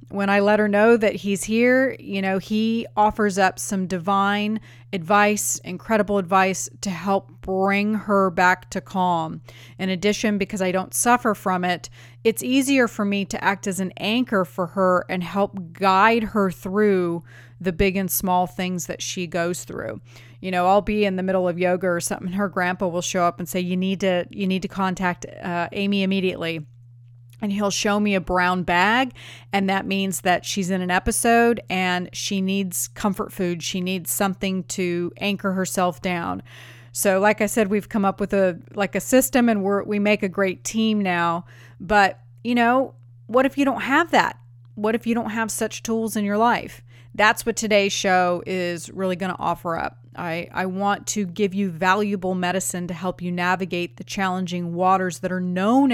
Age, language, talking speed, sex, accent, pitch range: 30-49, English, 195 wpm, female, American, 180-205 Hz